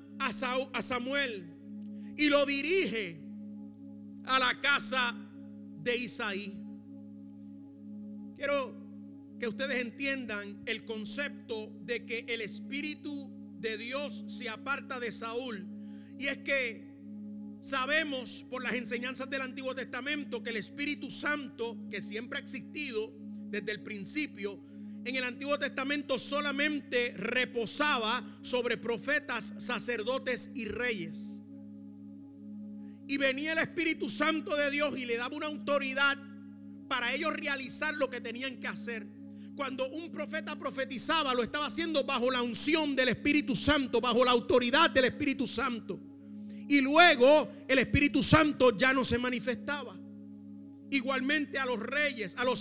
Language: English